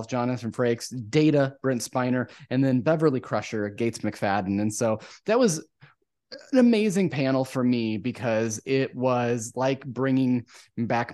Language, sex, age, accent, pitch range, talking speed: English, male, 30-49, American, 110-135 Hz, 140 wpm